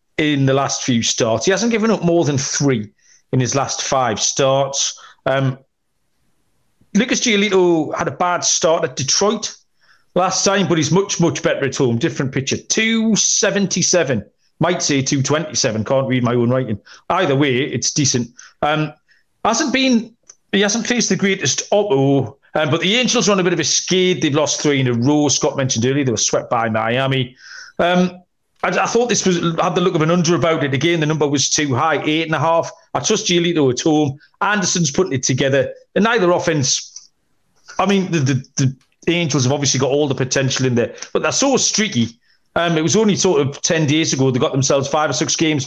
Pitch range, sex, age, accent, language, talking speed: 135-180 Hz, male, 40-59, British, English, 205 wpm